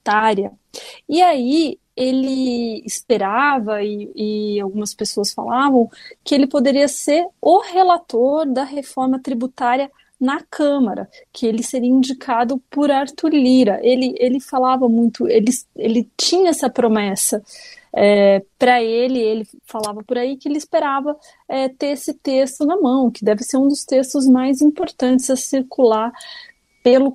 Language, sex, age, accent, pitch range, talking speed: Portuguese, female, 30-49, Brazilian, 215-280 Hz, 135 wpm